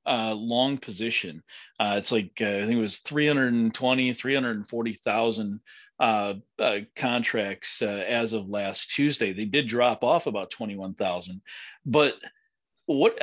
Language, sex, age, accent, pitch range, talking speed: English, male, 40-59, American, 110-140 Hz, 130 wpm